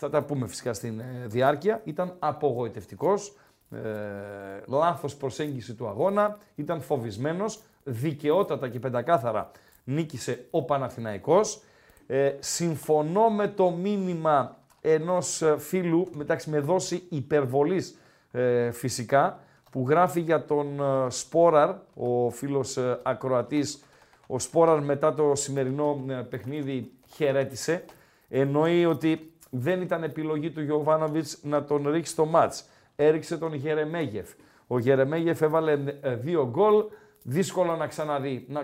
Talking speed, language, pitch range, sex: 120 wpm, Greek, 130-170 Hz, male